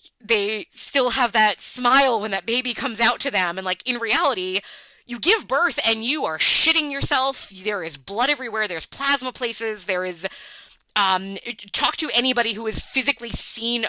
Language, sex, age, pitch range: English, female, 20-39, 180-245 Hz